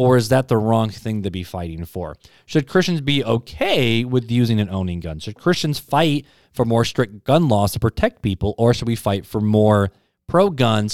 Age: 20-39